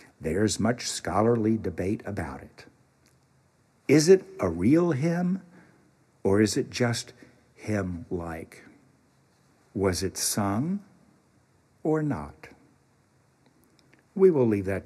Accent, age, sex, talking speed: American, 60-79, male, 100 wpm